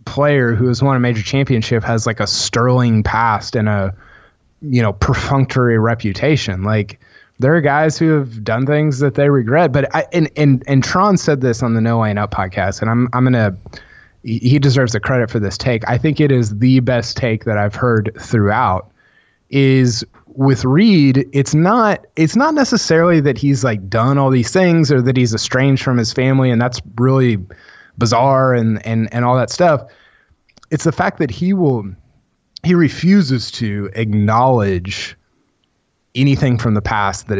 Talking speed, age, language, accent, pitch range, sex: 180 wpm, 20-39, English, American, 110-140 Hz, male